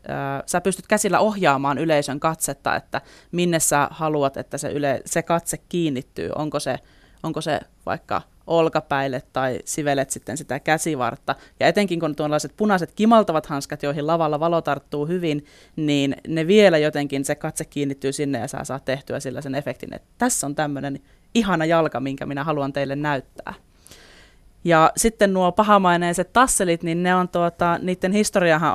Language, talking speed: Finnish, 160 wpm